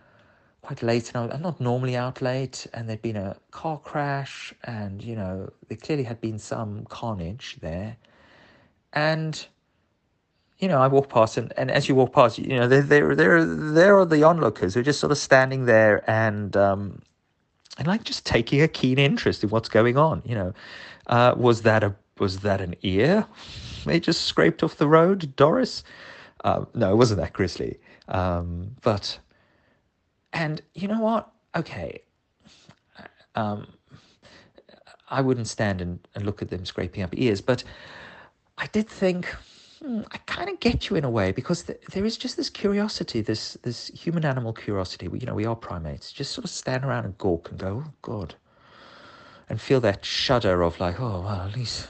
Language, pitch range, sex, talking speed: English, 100-145 Hz, male, 180 wpm